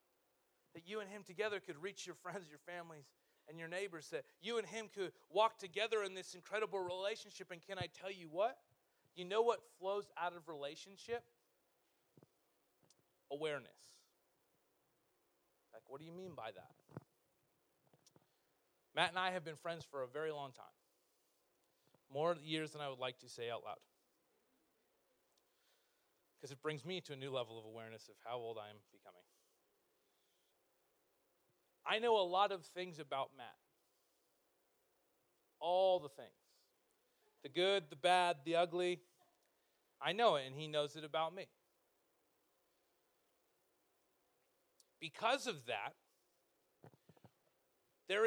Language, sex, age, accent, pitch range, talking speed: English, male, 30-49, American, 165-220 Hz, 140 wpm